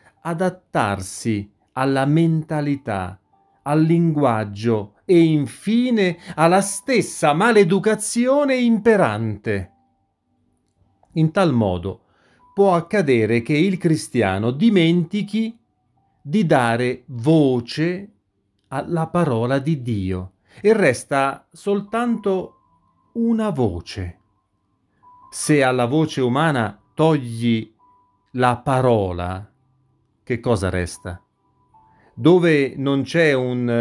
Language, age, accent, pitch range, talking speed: Italian, 40-59, native, 105-170 Hz, 80 wpm